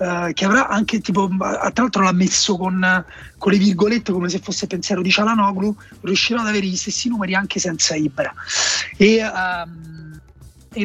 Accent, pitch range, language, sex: native, 165-205 Hz, Italian, male